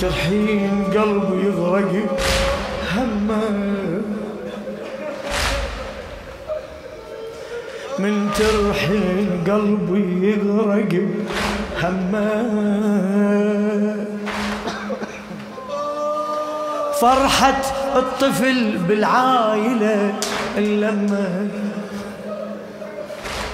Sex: male